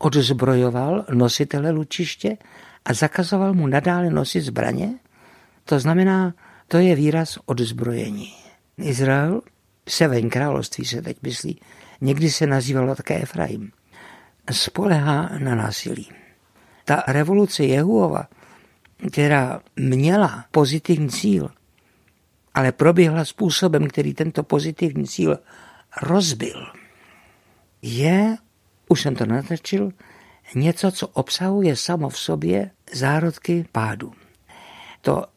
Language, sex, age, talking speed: Czech, male, 60-79, 100 wpm